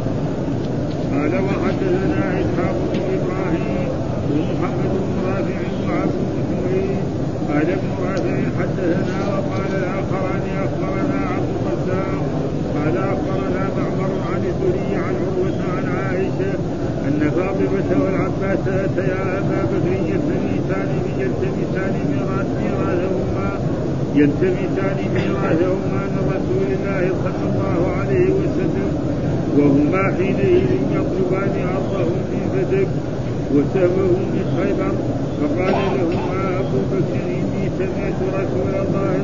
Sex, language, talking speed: male, Arabic, 95 wpm